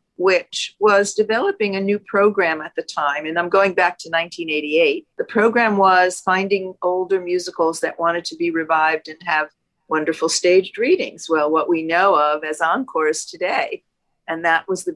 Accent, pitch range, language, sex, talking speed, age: American, 170-205 Hz, English, female, 175 wpm, 50-69